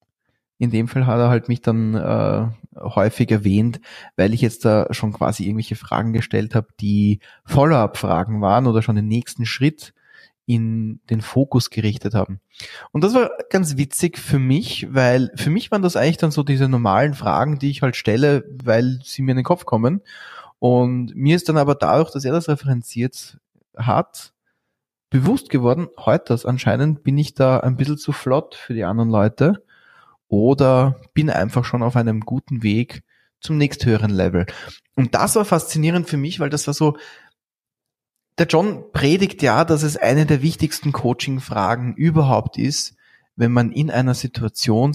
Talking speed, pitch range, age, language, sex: 170 wpm, 115-150 Hz, 20-39, German, male